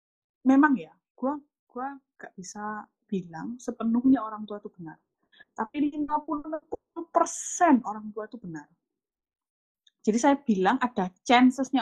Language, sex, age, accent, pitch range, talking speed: Indonesian, female, 20-39, native, 210-275 Hz, 120 wpm